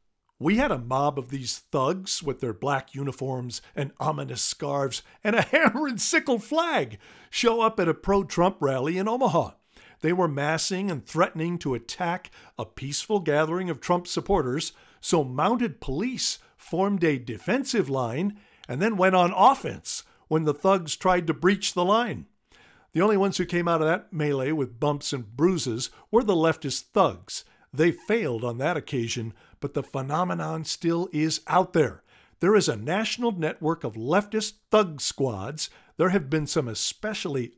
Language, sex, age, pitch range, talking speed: English, male, 50-69, 140-195 Hz, 165 wpm